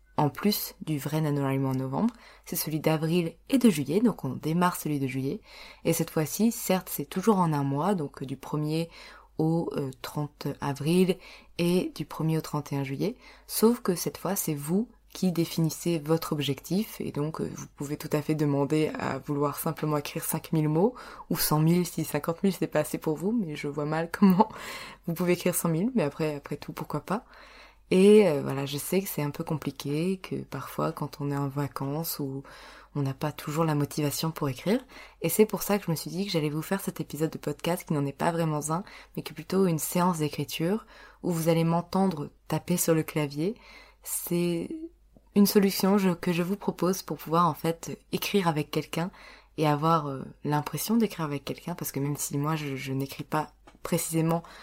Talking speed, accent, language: 205 wpm, French, French